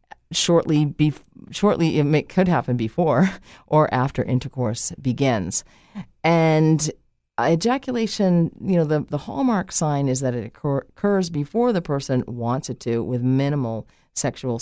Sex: female